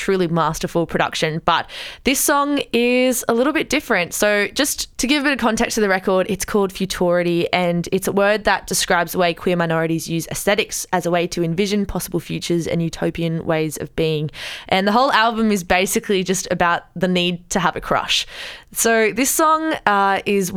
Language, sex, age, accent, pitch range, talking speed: English, female, 20-39, Australian, 170-215 Hz, 200 wpm